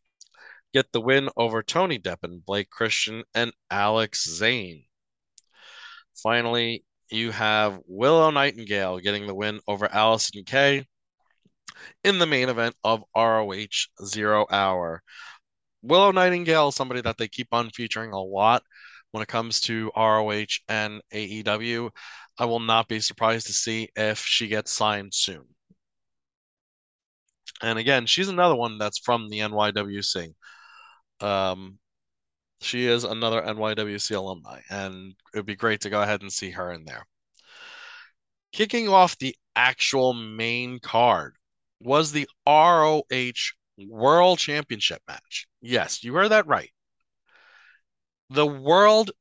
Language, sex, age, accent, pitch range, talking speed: English, male, 20-39, American, 105-140 Hz, 130 wpm